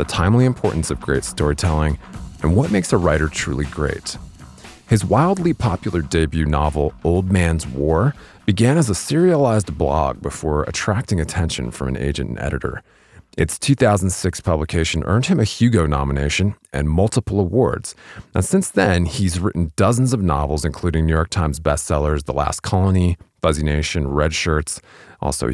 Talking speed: 155 wpm